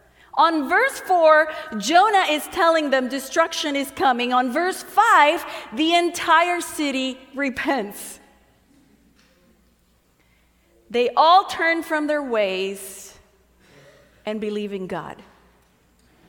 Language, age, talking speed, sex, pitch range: English, 40-59, 100 wpm, female, 205-315 Hz